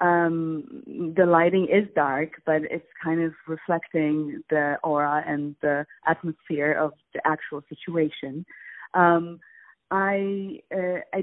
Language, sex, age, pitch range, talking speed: English, female, 30-49, 160-190 Hz, 110 wpm